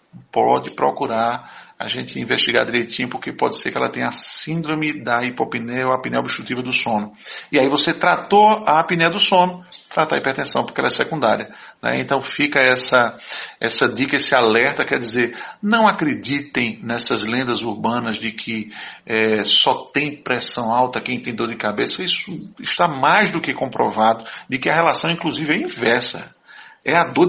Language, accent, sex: Portuguese, Brazilian, male